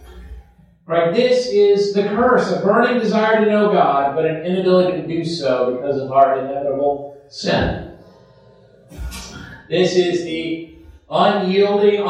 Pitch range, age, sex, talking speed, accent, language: 170-210 Hz, 40-59, male, 130 wpm, American, English